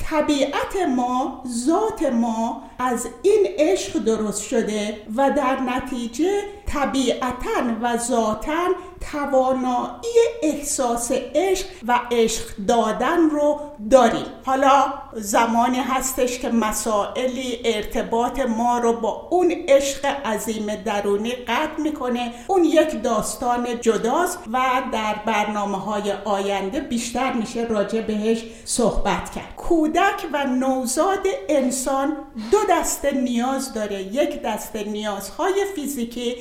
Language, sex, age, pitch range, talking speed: Persian, female, 60-79, 235-310 Hz, 105 wpm